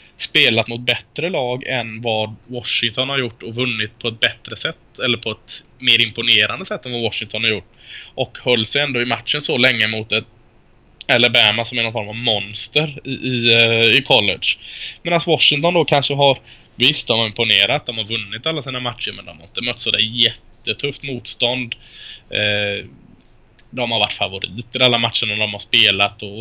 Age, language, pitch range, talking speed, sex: 20-39, Swedish, 115-135 Hz, 185 wpm, male